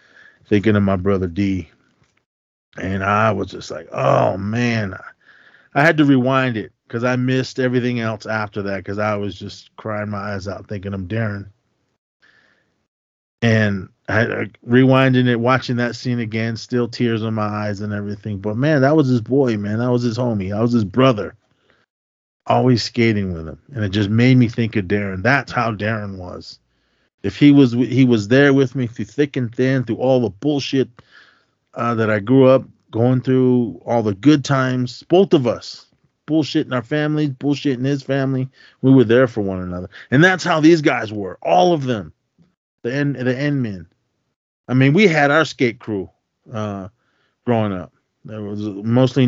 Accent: American